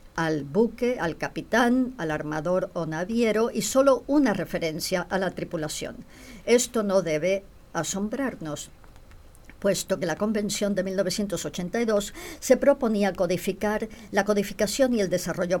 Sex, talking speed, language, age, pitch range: male, 125 wpm, English, 50-69, 170-220 Hz